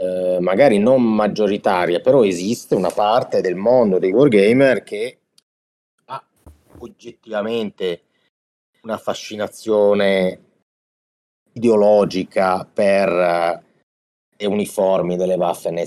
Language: Italian